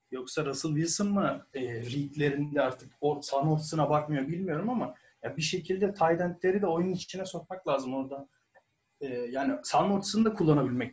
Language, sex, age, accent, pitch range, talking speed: Turkish, male, 40-59, native, 135-185 Hz, 155 wpm